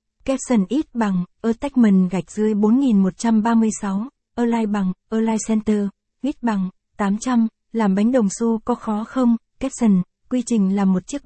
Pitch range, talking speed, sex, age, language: 200-235 Hz, 150 wpm, female, 20-39, Vietnamese